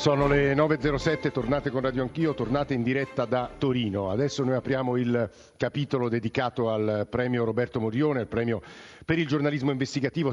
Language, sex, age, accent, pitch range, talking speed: Italian, male, 50-69, native, 110-140 Hz, 165 wpm